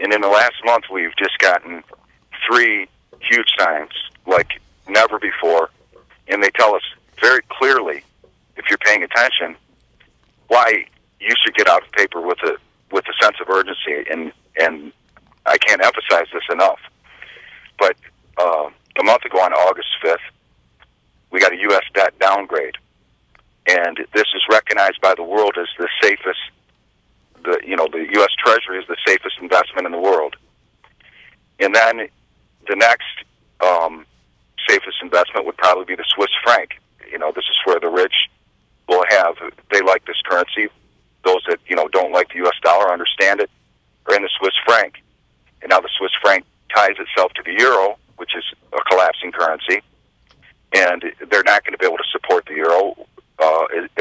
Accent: American